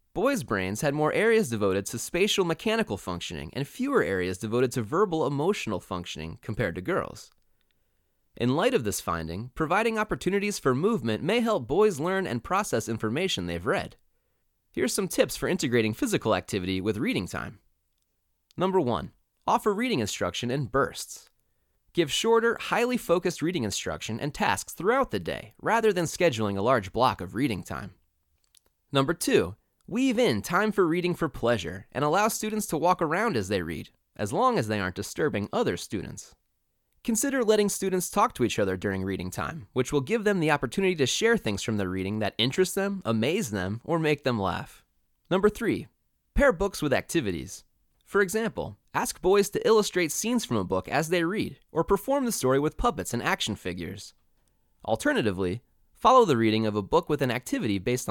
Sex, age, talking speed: male, 30-49, 180 wpm